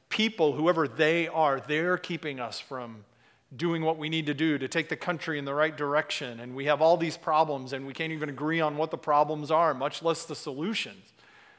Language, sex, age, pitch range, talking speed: English, male, 40-59, 140-170 Hz, 220 wpm